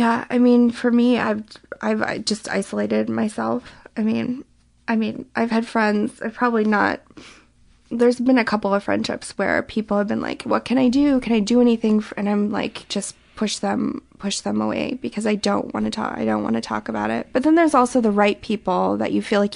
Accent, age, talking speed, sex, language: American, 20-39, 220 wpm, female, English